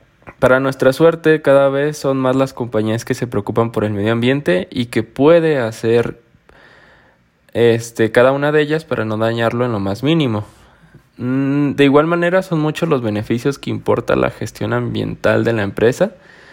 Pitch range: 115-145 Hz